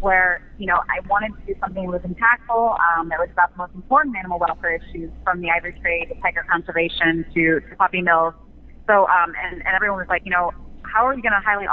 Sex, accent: female, American